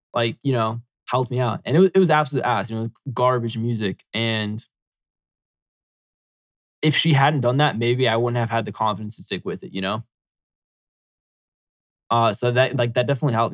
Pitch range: 110-125 Hz